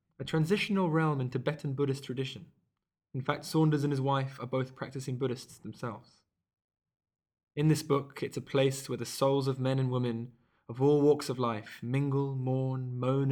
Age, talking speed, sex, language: 20-39, 175 wpm, male, English